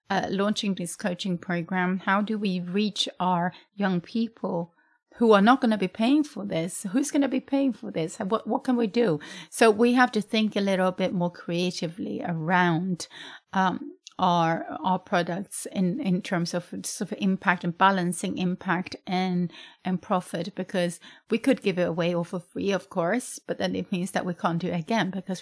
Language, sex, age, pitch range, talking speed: English, female, 30-49, 180-215 Hz, 195 wpm